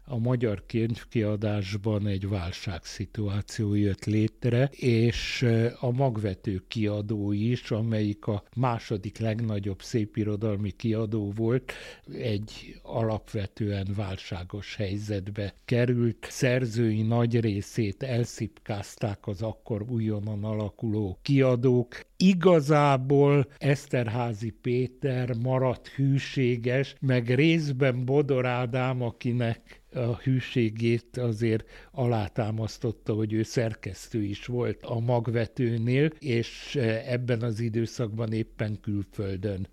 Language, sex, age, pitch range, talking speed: Hungarian, male, 60-79, 110-130 Hz, 90 wpm